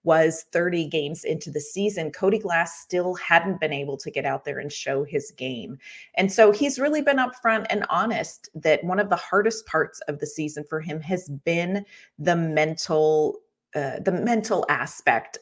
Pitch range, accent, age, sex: 150-195 Hz, American, 30-49, female